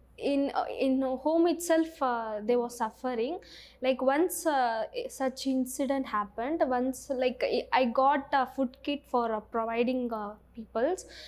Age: 20-39